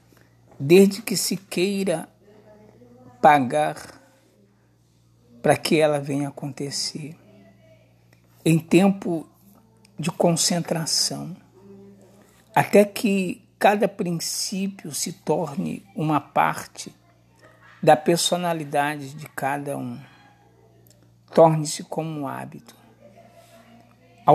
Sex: male